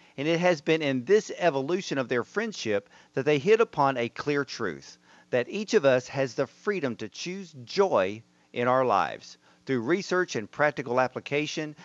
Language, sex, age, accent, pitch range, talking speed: English, male, 50-69, American, 120-175 Hz, 175 wpm